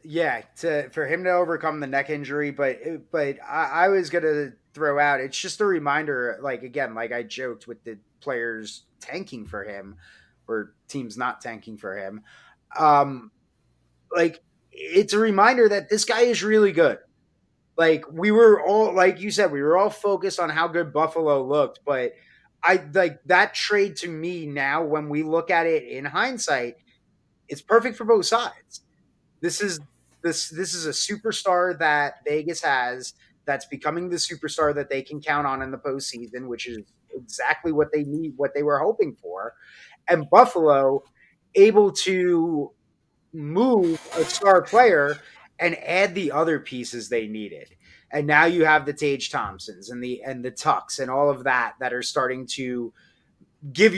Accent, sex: American, male